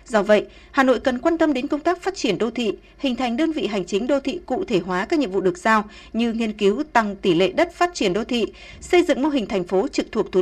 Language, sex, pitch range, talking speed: Vietnamese, female, 205-305 Hz, 290 wpm